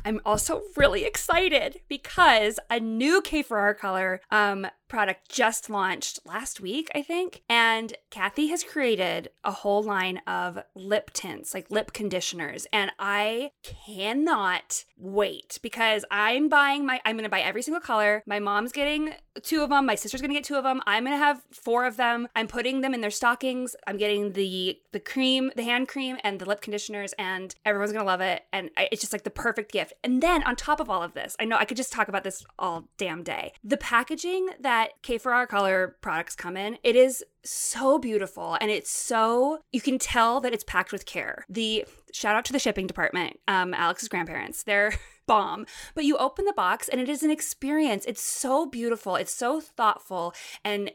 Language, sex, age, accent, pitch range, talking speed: English, female, 20-39, American, 205-270 Hz, 200 wpm